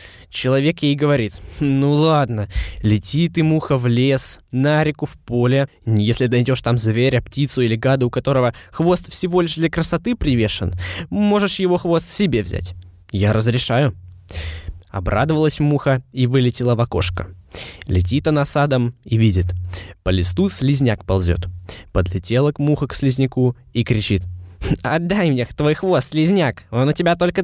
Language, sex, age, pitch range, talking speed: Russian, male, 20-39, 105-165 Hz, 150 wpm